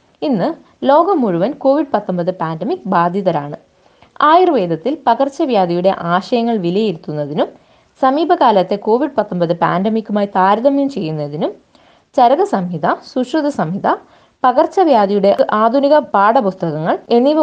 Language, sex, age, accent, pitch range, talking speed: Malayalam, female, 20-39, native, 185-275 Hz, 85 wpm